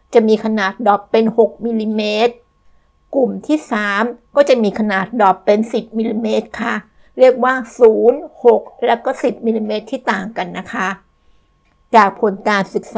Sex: female